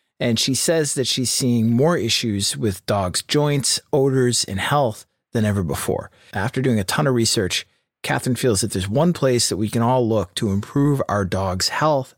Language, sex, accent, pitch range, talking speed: English, male, American, 110-150 Hz, 190 wpm